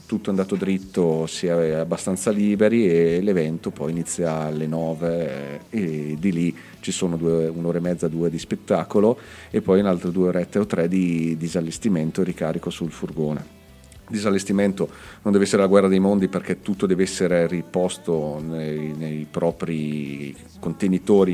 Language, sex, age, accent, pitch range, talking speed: Italian, male, 40-59, native, 80-100 Hz, 155 wpm